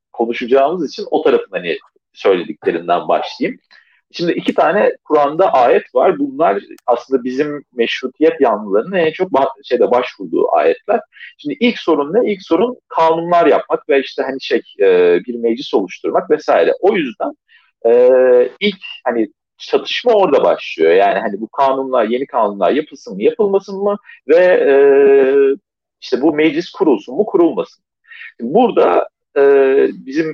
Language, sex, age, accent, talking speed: Turkish, male, 40-59, native, 130 wpm